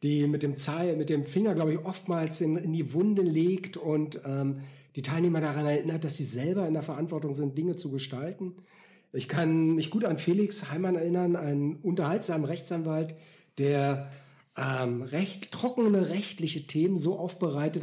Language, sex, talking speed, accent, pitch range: German, male, 170 wpm, German, 140-175 Hz